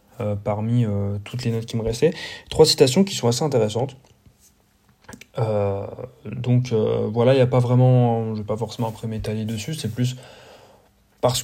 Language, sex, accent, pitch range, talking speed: French, male, French, 110-130 Hz, 180 wpm